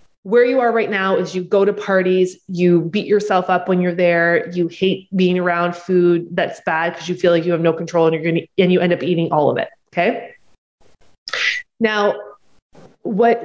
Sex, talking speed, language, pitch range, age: female, 210 wpm, English, 175-210 Hz, 20-39